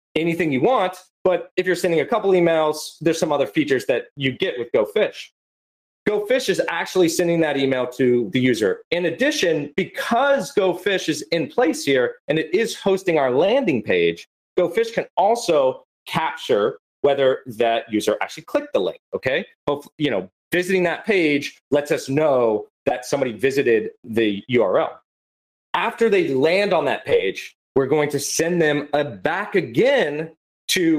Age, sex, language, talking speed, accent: 30-49, male, English, 160 wpm, American